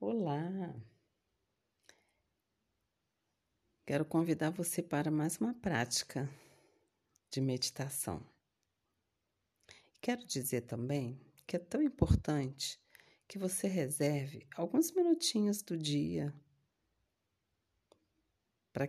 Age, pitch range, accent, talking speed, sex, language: 40-59, 105-155 Hz, Brazilian, 80 wpm, female, Portuguese